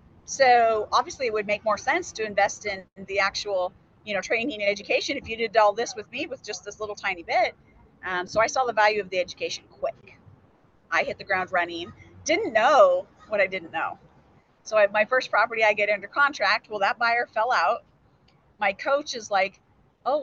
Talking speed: 210 wpm